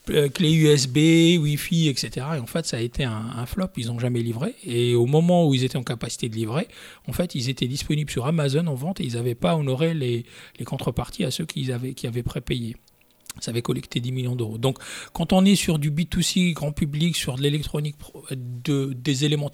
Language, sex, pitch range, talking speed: French, male, 130-170 Hz, 215 wpm